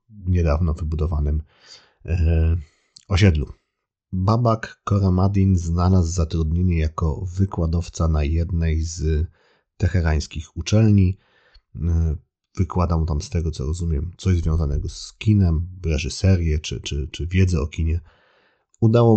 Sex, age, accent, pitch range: male, 40-59, native, 80-95 Hz